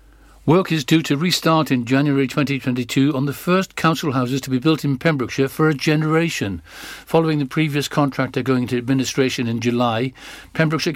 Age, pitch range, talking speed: 60-79, 125-155 Hz, 170 wpm